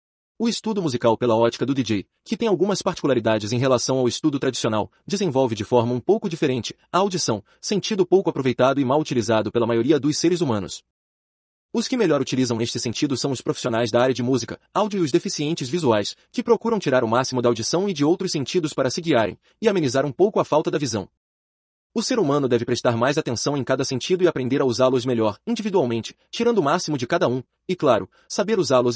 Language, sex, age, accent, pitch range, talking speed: Portuguese, male, 30-49, Brazilian, 120-175 Hz, 210 wpm